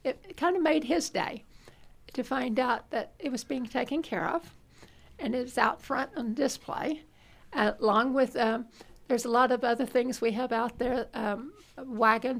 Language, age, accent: English, 60-79, American